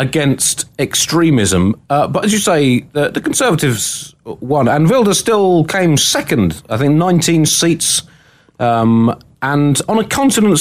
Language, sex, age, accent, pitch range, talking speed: English, male, 30-49, British, 125-180 Hz, 140 wpm